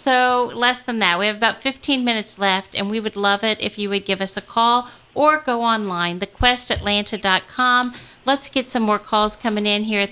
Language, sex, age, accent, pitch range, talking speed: English, female, 40-59, American, 210-255 Hz, 210 wpm